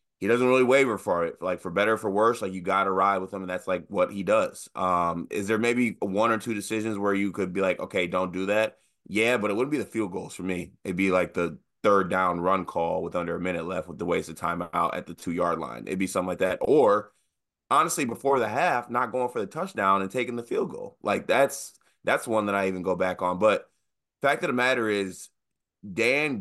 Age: 20-39